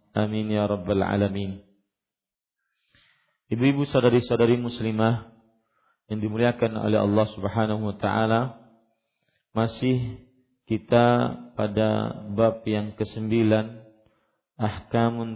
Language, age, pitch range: Malay, 50-69, 105-120 Hz